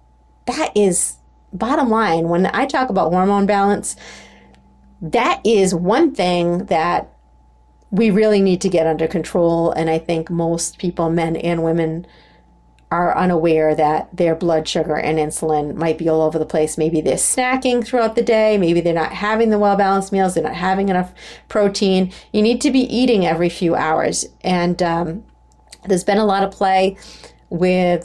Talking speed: 170 wpm